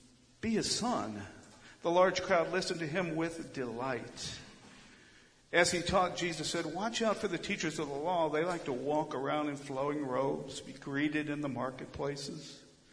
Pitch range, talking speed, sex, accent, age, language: 130-155 Hz, 170 wpm, male, American, 50-69, English